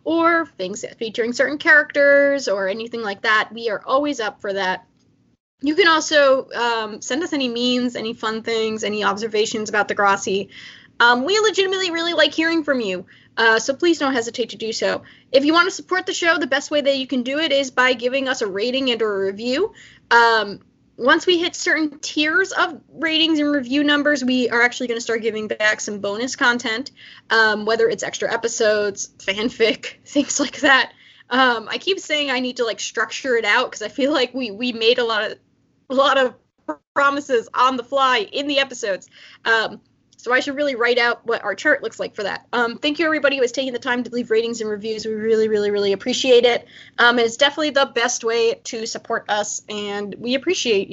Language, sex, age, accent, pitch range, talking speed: English, female, 10-29, American, 225-290 Hz, 210 wpm